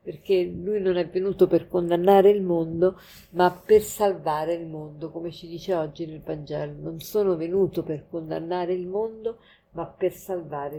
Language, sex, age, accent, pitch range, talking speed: Italian, female, 50-69, native, 175-215 Hz, 165 wpm